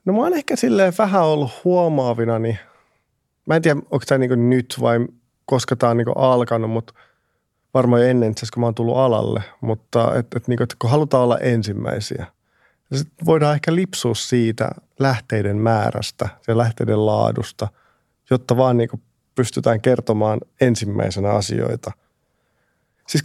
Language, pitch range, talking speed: Finnish, 110-135 Hz, 155 wpm